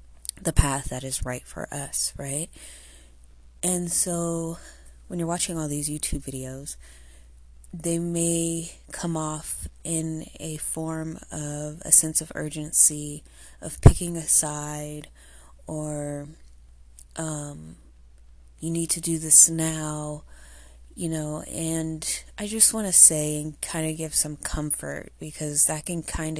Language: English